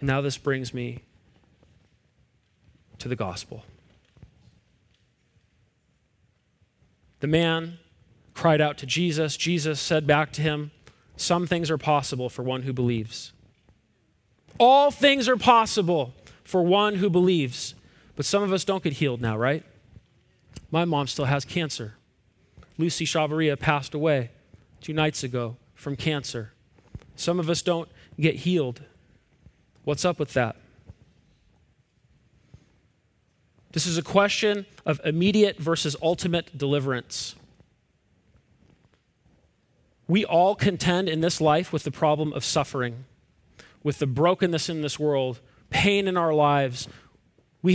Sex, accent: male, American